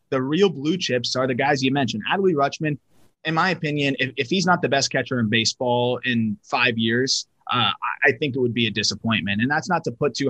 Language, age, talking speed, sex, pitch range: English, 30-49, 235 wpm, male, 115-140 Hz